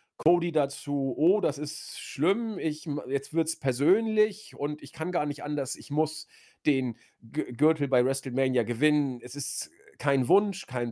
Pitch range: 145-195 Hz